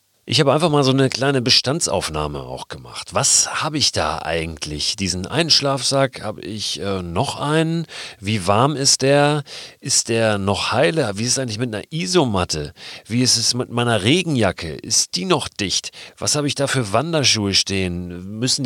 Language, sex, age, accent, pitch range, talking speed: German, male, 40-59, German, 100-130 Hz, 180 wpm